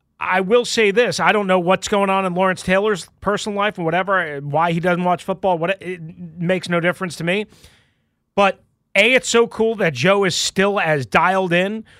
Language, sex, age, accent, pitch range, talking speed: English, male, 30-49, American, 160-200 Hz, 200 wpm